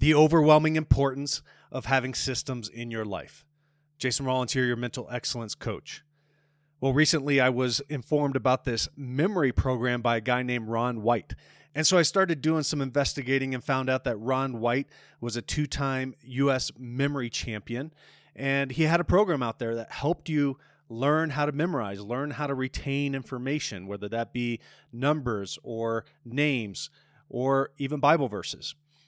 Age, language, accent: 30-49, English, American